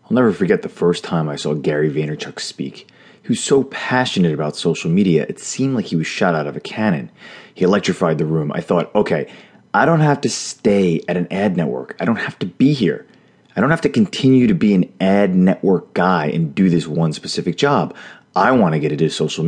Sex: male